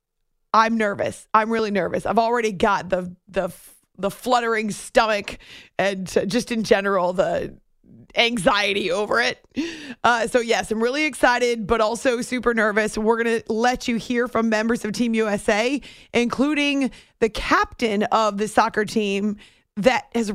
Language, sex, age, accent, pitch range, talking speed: English, female, 30-49, American, 205-240 Hz, 150 wpm